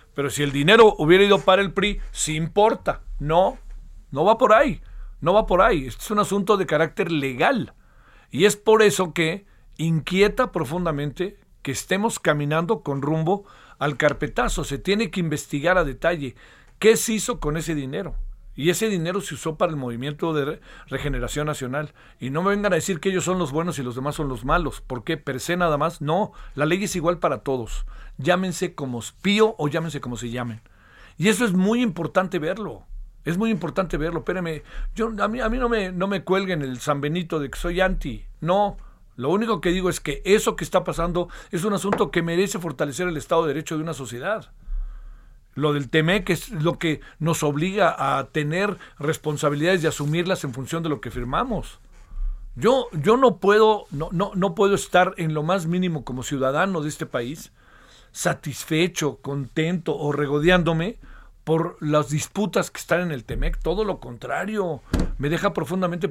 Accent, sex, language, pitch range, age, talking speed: Mexican, male, Spanish, 145-190 Hz, 50-69, 185 wpm